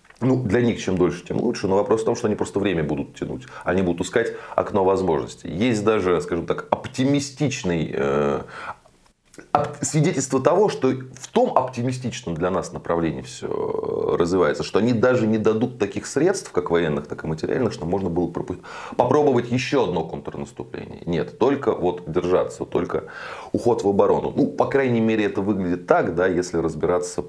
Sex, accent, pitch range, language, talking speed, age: male, native, 80-110 Hz, Russian, 170 wpm, 30-49